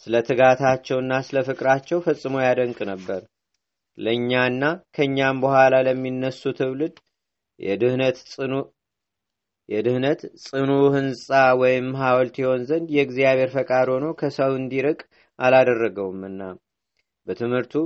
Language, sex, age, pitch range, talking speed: Amharic, male, 30-49, 125-135 Hz, 85 wpm